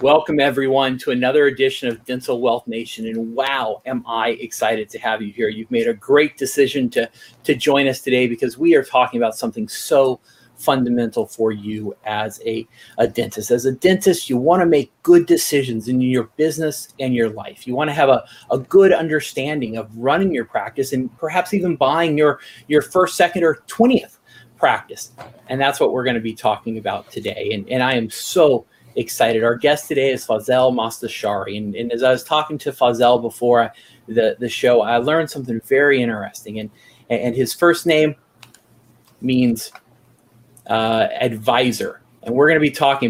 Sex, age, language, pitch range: male, 40-59, English, 115-155 Hz